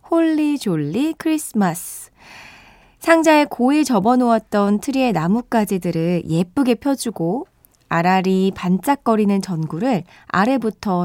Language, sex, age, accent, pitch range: Korean, female, 20-39, native, 180-255 Hz